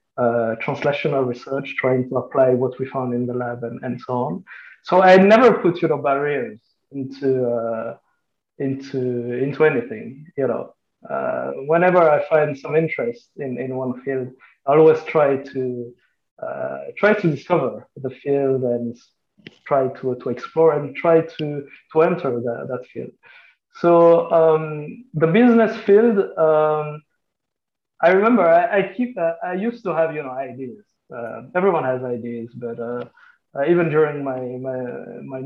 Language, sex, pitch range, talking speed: English, male, 125-165 Hz, 160 wpm